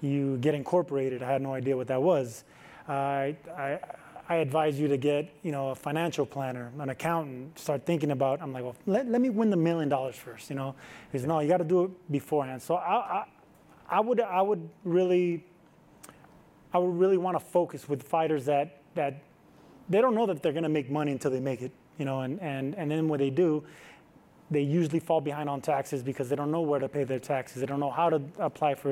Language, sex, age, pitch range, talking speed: English, male, 20-39, 140-165 Hz, 230 wpm